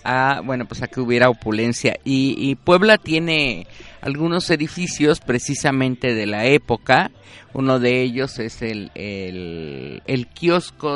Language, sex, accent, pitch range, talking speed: Spanish, male, Mexican, 115-155 Hz, 120 wpm